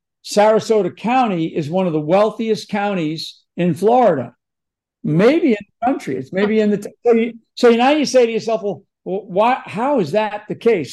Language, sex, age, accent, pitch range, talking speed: English, male, 60-79, American, 175-210 Hz, 180 wpm